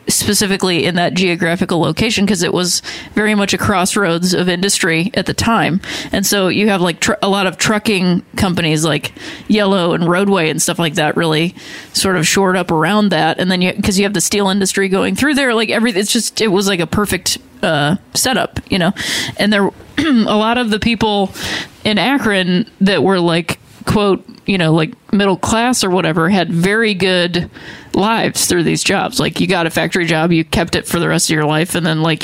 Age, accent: 20-39, American